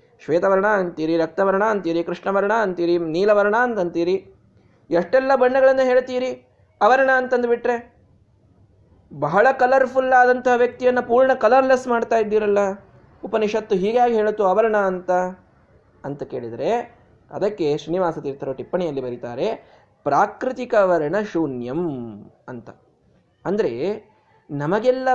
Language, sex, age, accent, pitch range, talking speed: Kannada, male, 20-39, native, 180-255 Hz, 85 wpm